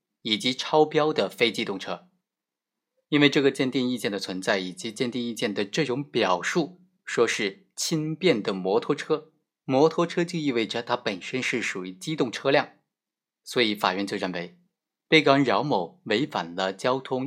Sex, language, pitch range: male, Chinese, 100-150 Hz